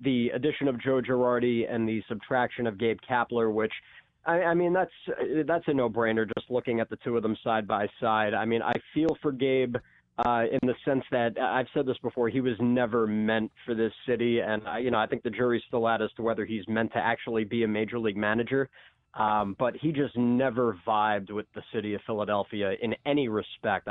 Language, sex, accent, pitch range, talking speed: English, male, American, 110-130 Hz, 220 wpm